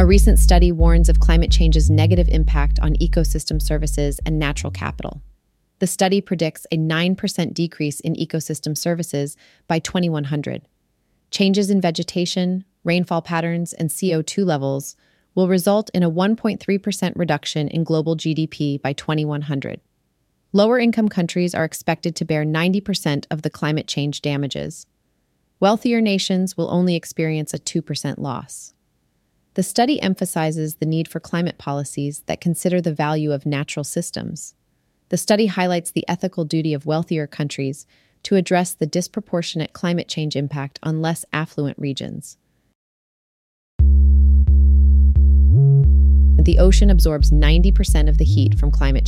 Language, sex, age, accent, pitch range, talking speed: English, female, 30-49, American, 140-175 Hz, 135 wpm